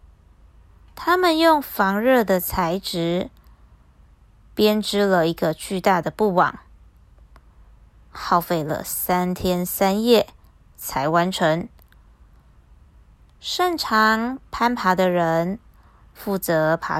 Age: 20-39